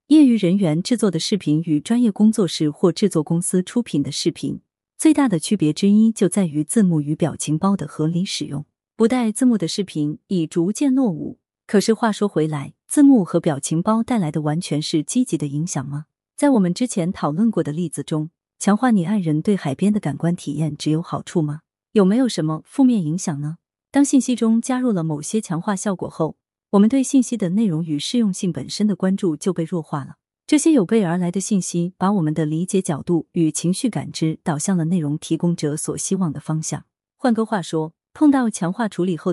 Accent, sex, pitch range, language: native, female, 155-220 Hz, Chinese